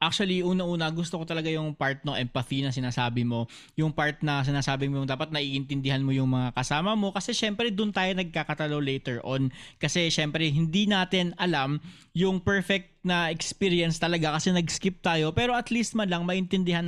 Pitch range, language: 145-185 Hz, Filipino